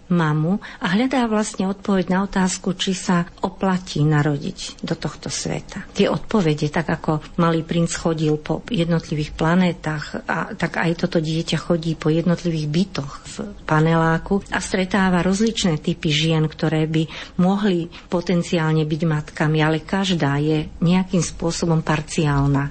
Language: Slovak